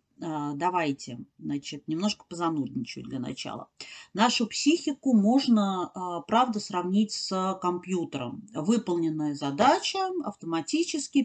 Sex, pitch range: female, 175-245 Hz